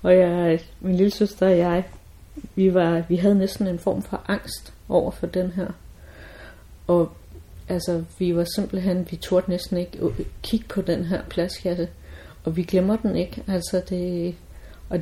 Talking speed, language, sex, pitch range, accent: 170 wpm, Danish, female, 175-200 Hz, native